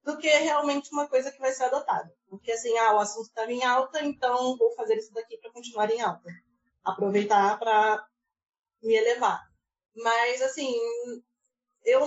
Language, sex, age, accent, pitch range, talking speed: Portuguese, female, 20-39, Brazilian, 215-280 Hz, 170 wpm